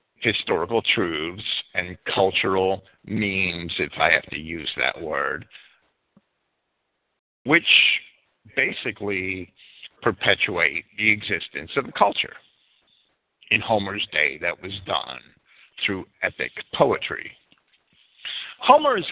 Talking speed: 95 wpm